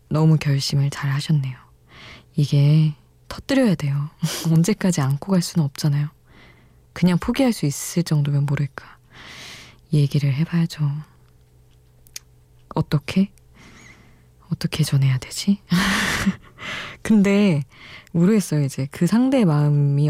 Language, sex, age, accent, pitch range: Korean, female, 20-39, native, 140-175 Hz